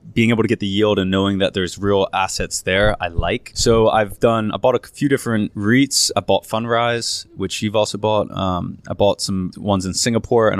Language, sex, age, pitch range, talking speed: English, male, 20-39, 100-115 Hz, 220 wpm